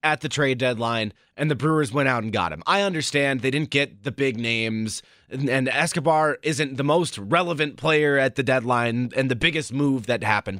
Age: 30-49